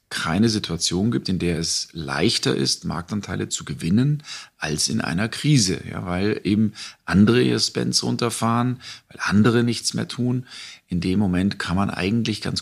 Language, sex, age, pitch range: German, male, 40-59, 90-110 Hz